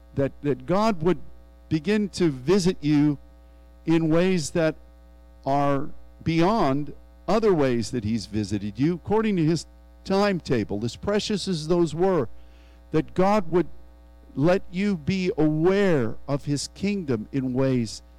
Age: 50-69